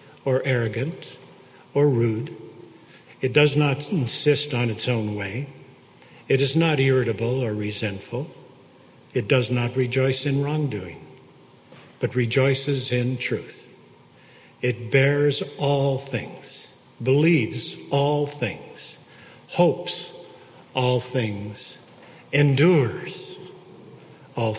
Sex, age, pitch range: male, 50-69, 125-145 Hz